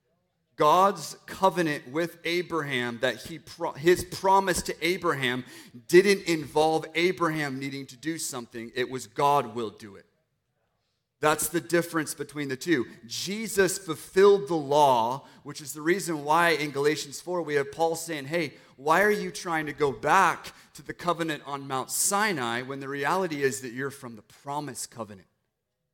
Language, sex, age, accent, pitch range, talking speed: English, male, 30-49, American, 130-175 Hz, 160 wpm